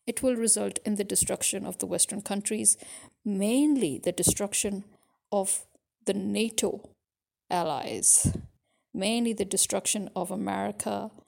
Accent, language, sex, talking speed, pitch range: Indian, English, female, 115 wpm, 195-225 Hz